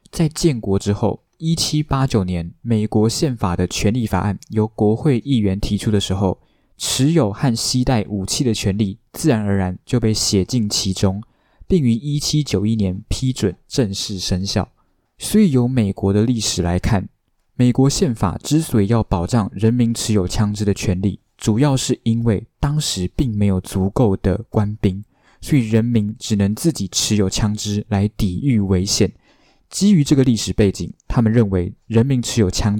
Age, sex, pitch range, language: 20-39, male, 95-120 Hz, Chinese